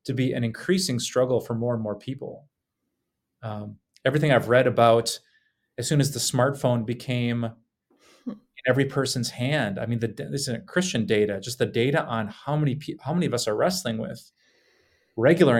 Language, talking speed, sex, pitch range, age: English, 175 wpm, male, 115-155 Hz, 30-49